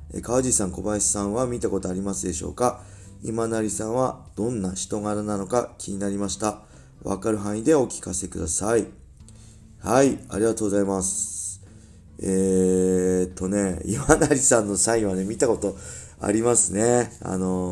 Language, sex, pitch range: Japanese, male, 85-115 Hz